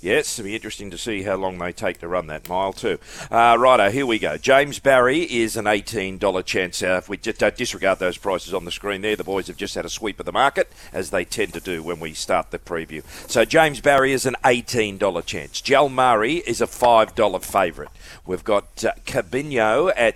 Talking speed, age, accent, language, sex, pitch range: 225 wpm, 40-59, Australian, English, male, 95-120 Hz